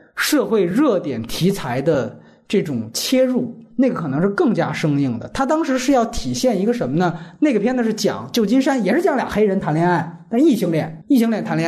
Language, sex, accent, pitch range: Chinese, male, native, 195-260 Hz